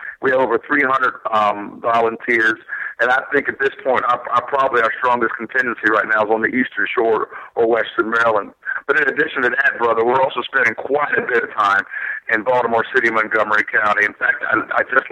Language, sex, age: English, male, 50-69